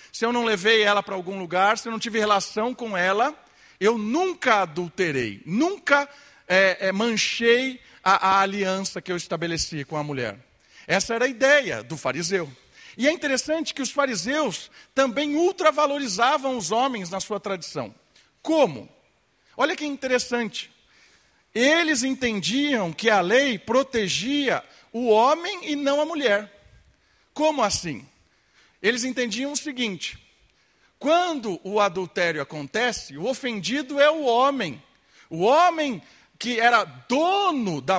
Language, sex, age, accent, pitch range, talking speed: Portuguese, male, 50-69, Brazilian, 190-285 Hz, 135 wpm